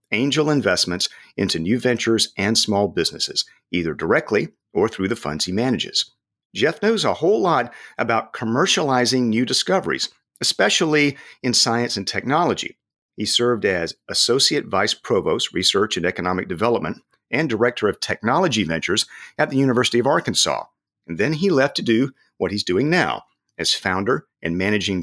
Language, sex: English, male